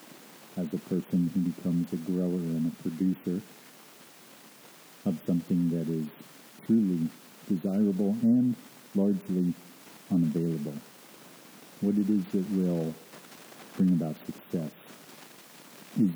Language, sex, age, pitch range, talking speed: English, male, 50-69, 85-115 Hz, 105 wpm